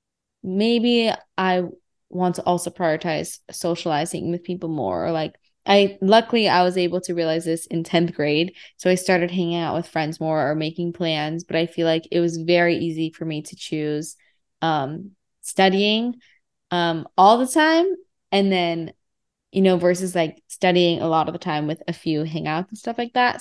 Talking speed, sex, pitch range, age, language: 180 wpm, female, 160-185 Hz, 20-39, English